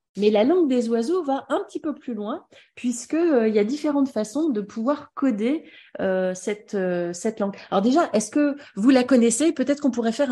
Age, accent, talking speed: 30-49, French, 210 wpm